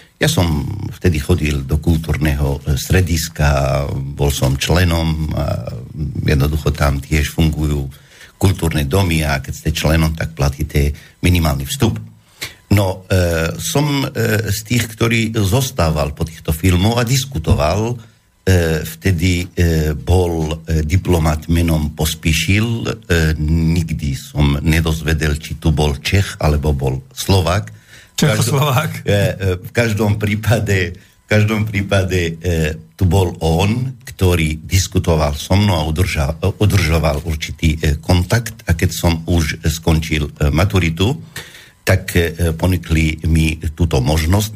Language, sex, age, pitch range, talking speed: Slovak, male, 60-79, 80-100 Hz, 120 wpm